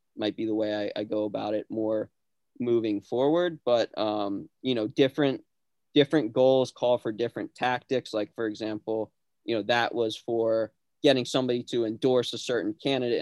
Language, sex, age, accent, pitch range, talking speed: English, male, 20-39, American, 105-120 Hz, 175 wpm